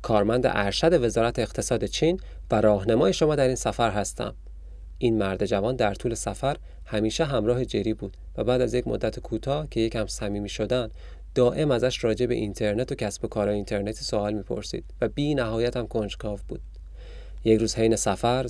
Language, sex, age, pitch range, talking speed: Persian, male, 30-49, 100-125 Hz, 180 wpm